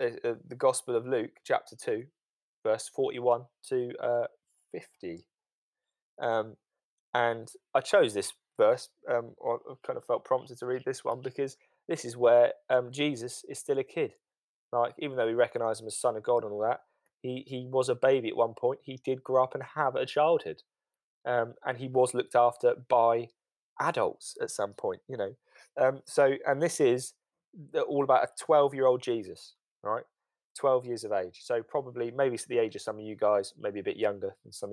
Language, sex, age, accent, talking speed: English, male, 20-39, British, 195 wpm